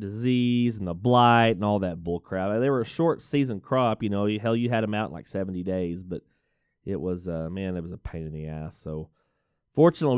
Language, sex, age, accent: English, male, 30-49, American